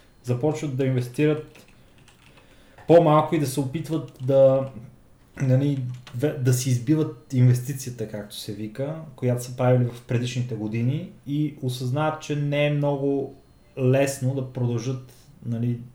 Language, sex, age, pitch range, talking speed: Bulgarian, male, 20-39, 120-140 Hz, 125 wpm